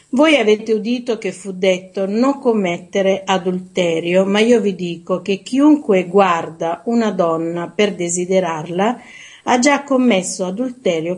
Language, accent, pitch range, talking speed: Italian, native, 175-220 Hz, 130 wpm